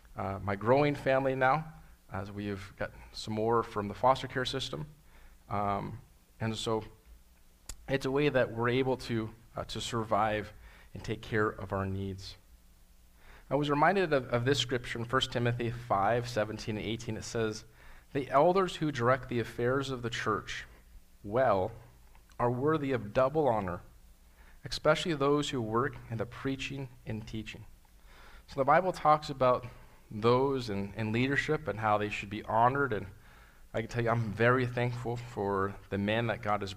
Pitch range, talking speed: 100-125 Hz, 170 wpm